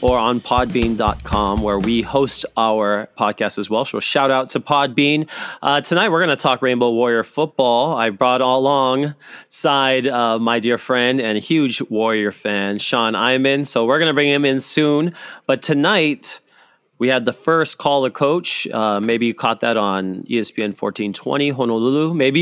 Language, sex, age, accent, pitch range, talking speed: English, male, 30-49, American, 115-155 Hz, 165 wpm